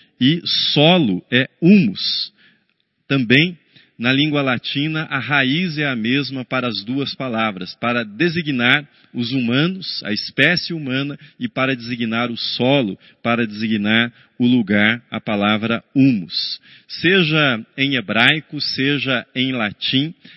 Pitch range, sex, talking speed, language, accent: 125-170 Hz, male, 125 wpm, Portuguese, Brazilian